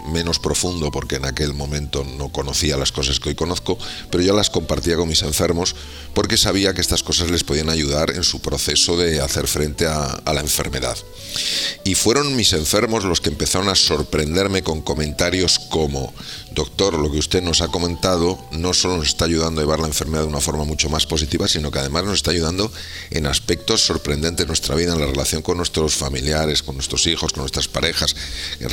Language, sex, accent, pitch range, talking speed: Spanish, male, Spanish, 75-85 Hz, 205 wpm